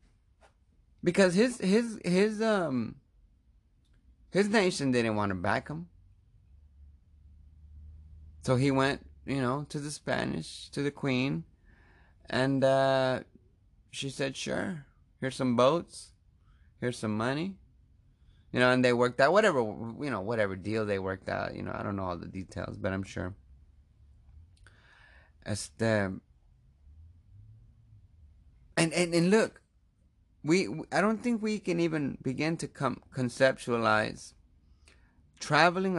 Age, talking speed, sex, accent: 30-49, 125 wpm, male, American